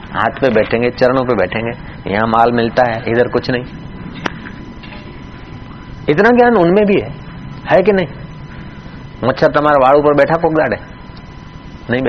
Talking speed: 140 wpm